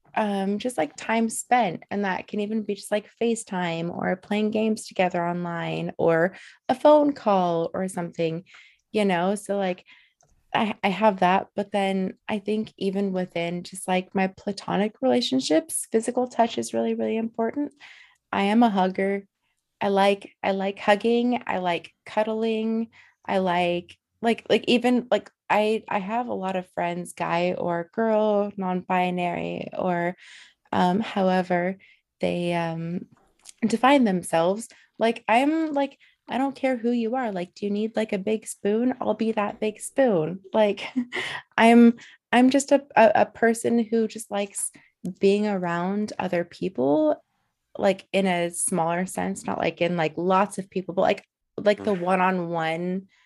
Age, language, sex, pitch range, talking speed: 20-39, English, female, 180-225 Hz, 155 wpm